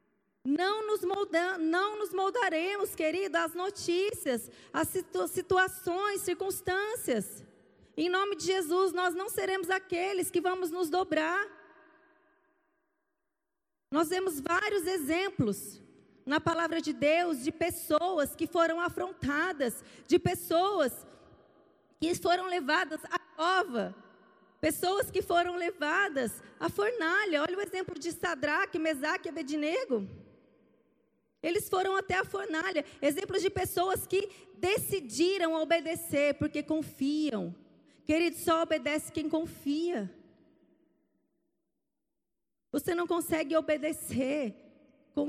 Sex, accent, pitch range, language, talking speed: female, Brazilian, 300-370 Hz, Portuguese, 105 wpm